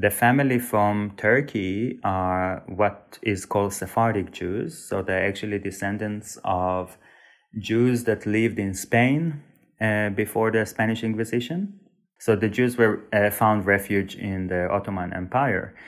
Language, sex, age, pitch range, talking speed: Bulgarian, male, 30-49, 95-115 Hz, 135 wpm